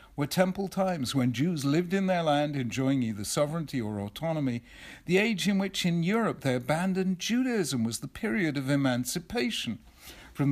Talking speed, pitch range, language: 165 wpm, 125-185 Hz, English